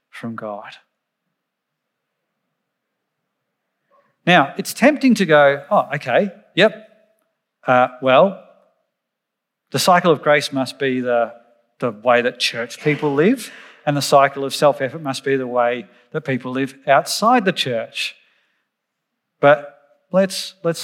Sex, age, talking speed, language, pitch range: male, 40-59, 125 wpm, English, 125-150 Hz